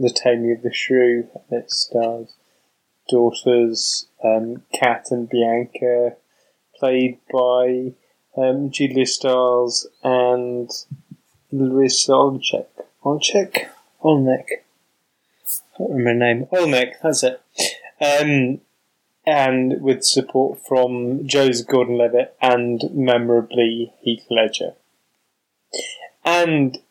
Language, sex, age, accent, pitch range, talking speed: English, male, 20-39, British, 120-130 Hz, 90 wpm